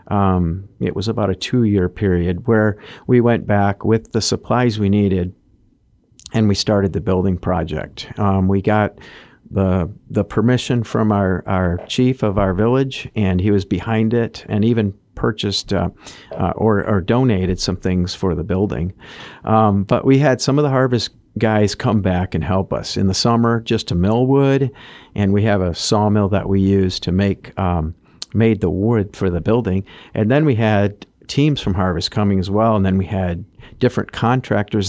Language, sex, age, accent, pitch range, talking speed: English, male, 50-69, American, 95-115 Hz, 185 wpm